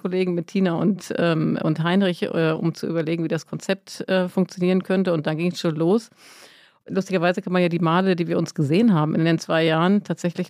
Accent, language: German, German